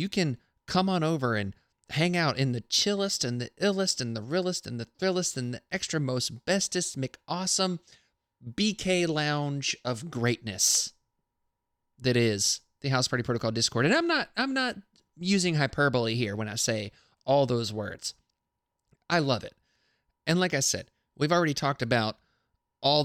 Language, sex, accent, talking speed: English, male, American, 160 wpm